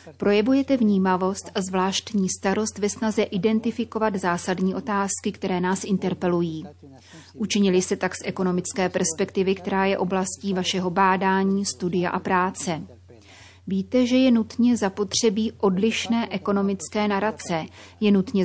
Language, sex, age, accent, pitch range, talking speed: Czech, female, 30-49, native, 185-210 Hz, 120 wpm